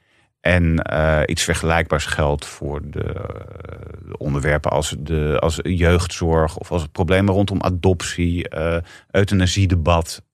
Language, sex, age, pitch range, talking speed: Dutch, male, 50-69, 80-100 Hz, 120 wpm